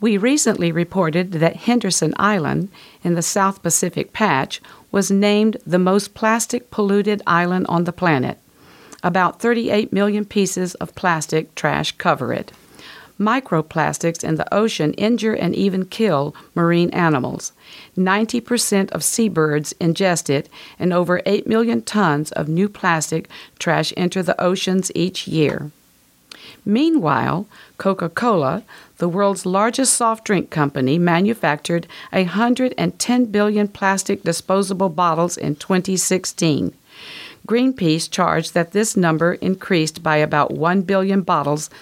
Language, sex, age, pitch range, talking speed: English, female, 50-69, 170-210 Hz, 120 wpm